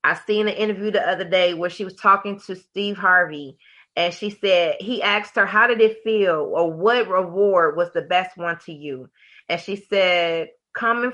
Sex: female